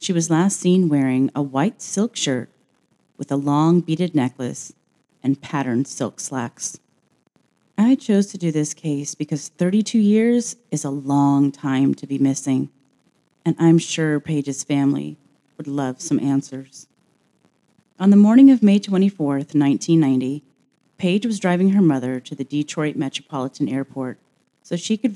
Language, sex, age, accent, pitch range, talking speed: English, female, 30-49, American, 135-175 Hz, 150 wpm